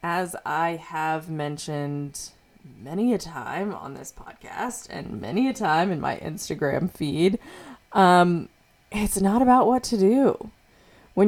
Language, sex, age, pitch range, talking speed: English, female, 20-39, 150-195 Hz, 140 wpm